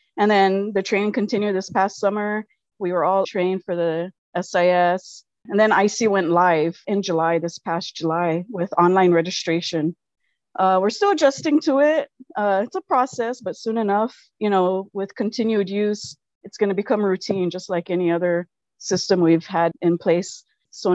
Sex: female